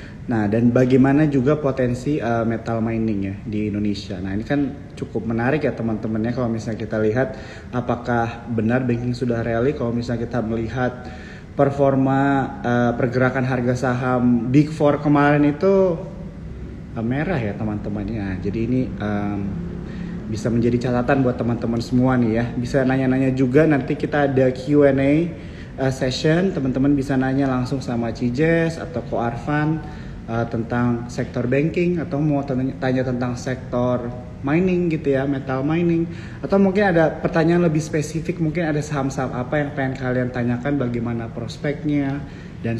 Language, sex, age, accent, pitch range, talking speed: Indonesian, male, 30-49, native, 115-145 Hz, 150 wpm